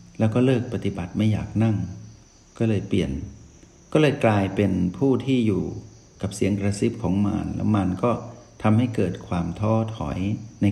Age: 60-79